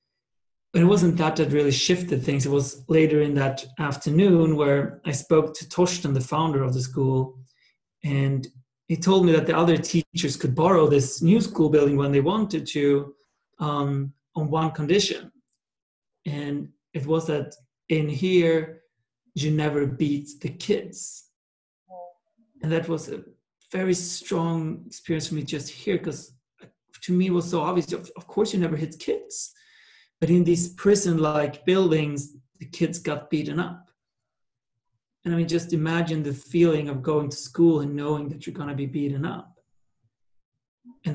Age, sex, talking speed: 40-59, male, 160 wpm